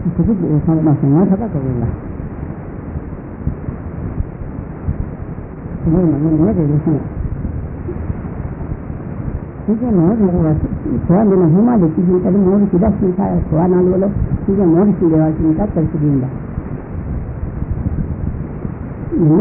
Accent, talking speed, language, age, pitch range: American, 100 wpm, Italian, 60-79, 145-180 Hz